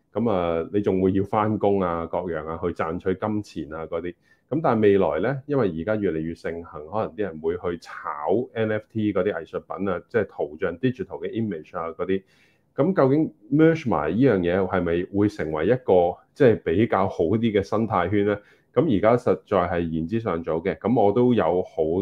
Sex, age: male, 20-39